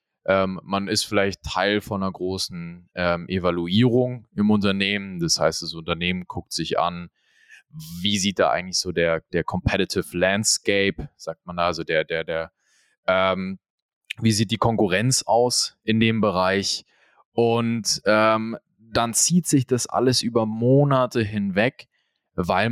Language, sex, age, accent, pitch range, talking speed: German, male, 20-39, German, 95-115 Hz, 145 wpm